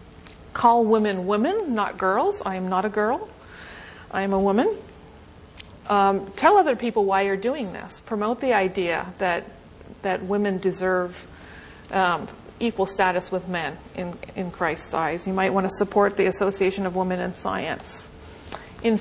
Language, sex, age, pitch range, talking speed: English, female, 40-59, 185-225 Hz, 160 wpm